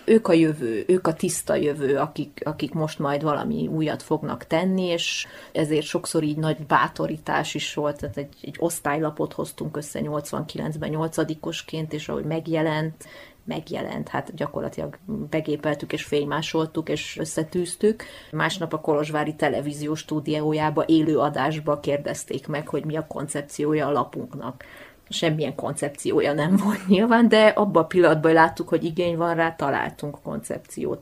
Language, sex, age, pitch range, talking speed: Hungarian, female, 30-49, 150-175 Hz, 145 wpm